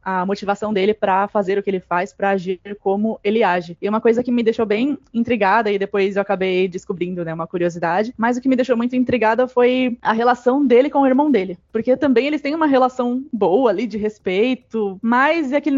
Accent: Brazilian